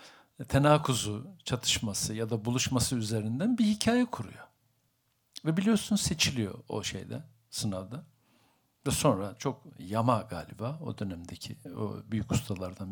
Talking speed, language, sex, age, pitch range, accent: 115 wpm, Turkish, male, 60-79, 115-155 Hz, native